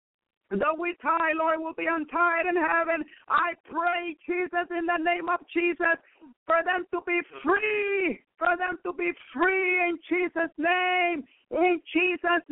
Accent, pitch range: American, 330-350 Hz